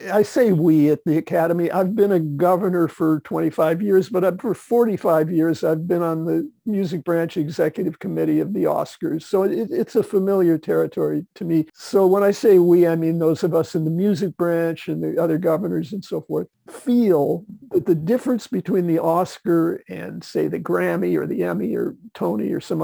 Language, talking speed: English, 195 wpm